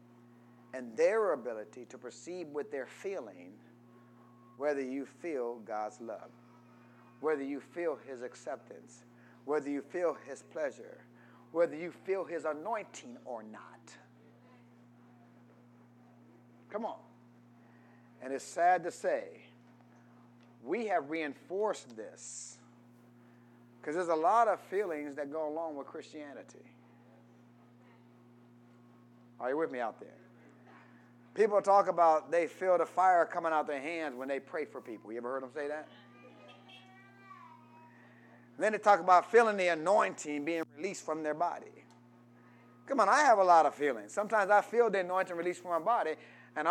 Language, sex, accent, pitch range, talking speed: English, male, American, 120-185 Hz, 140 wpm